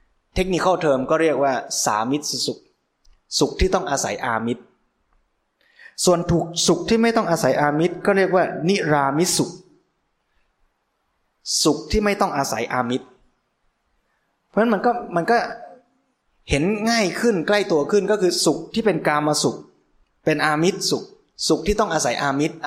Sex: male